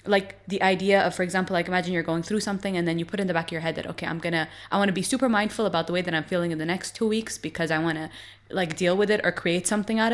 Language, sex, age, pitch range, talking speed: English, female, 20-39, 160-195 Hz, 315 wpm